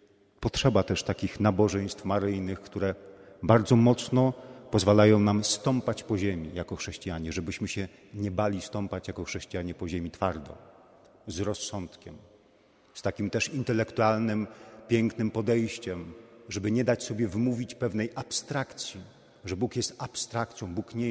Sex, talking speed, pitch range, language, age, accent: male, 130 wpm, 100-115 Hz, Polish, 40-59, native